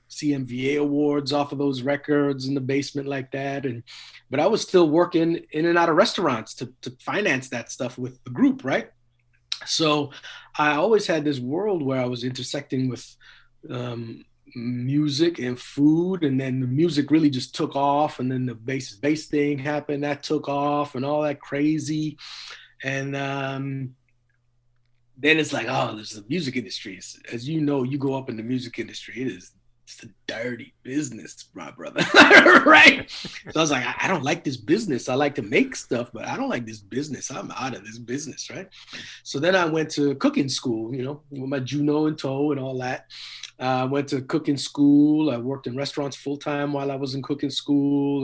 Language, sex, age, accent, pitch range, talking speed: English, male, 30-49, American, 125-145 Hz, 195 wpm